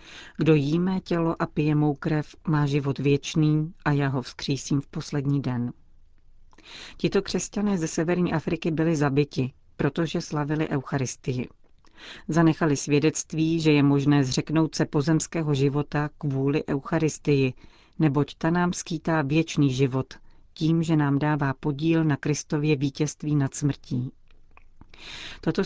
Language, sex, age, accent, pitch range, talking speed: Czech, female, 40-59, native, 140-160 Hz, 130 wpm